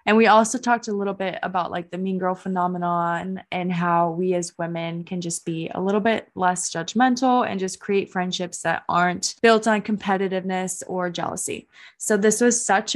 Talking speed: 190 wpm